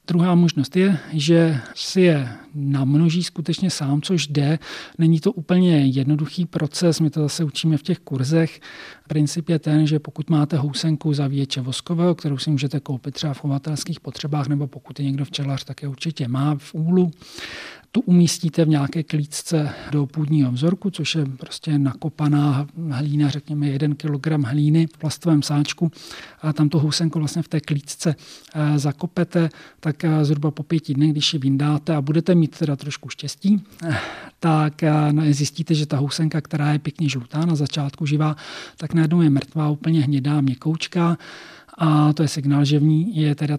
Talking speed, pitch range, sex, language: 170 wpm, 145-160 Hz, male, Czech